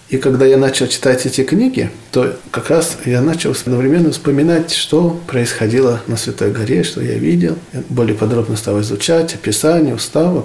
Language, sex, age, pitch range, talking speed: Russian, male, 40-59, 110-150 Hz, 160 wpm